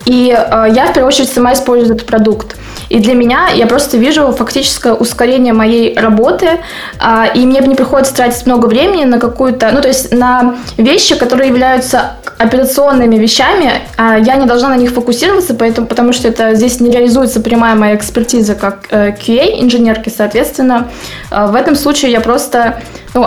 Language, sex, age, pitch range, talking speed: Russian, female, 20-39, 225-260 Hz, 180 wpm